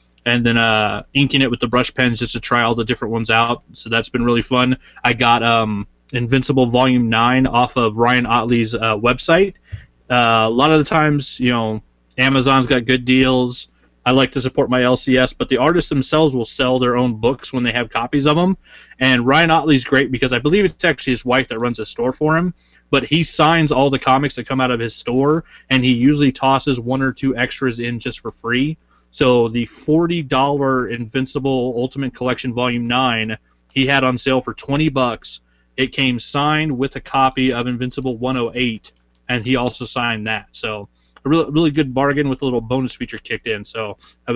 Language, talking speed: English, 205 wpm